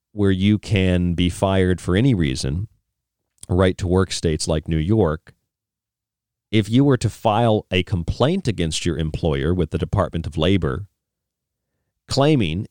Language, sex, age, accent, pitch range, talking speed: English, male, 40-59, American, 90-110 Hz, 145 wpm